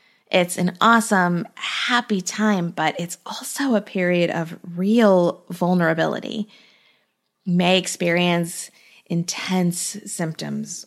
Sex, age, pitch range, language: female, 20-39, 175-215 Hz, English